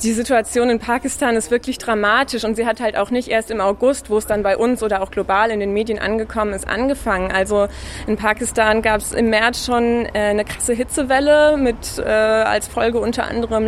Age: 20-39